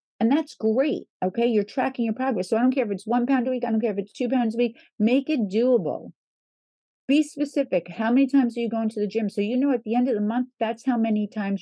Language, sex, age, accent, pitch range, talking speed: English, female, 50-69, American, 185-255 Hz, 280 wpm